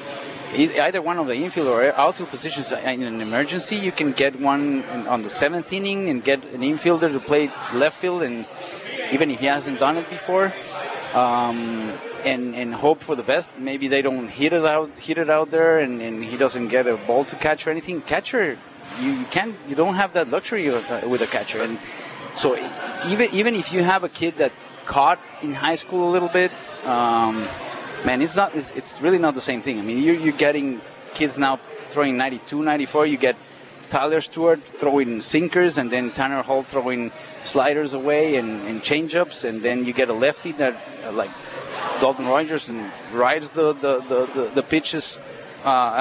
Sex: male